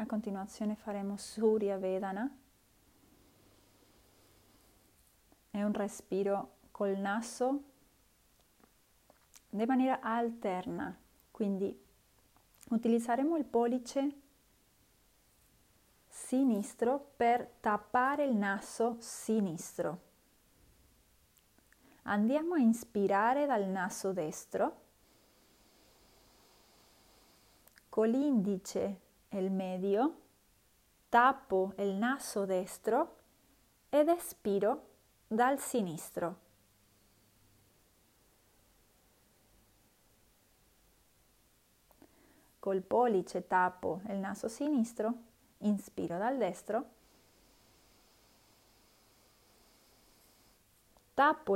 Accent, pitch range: native, 185-240 Hz